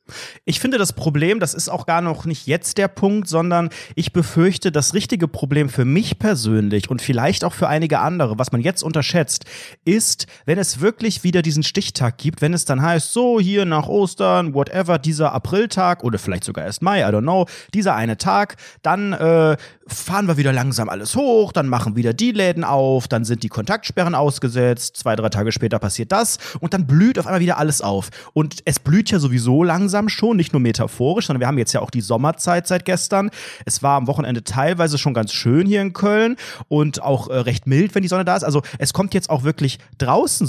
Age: 30-49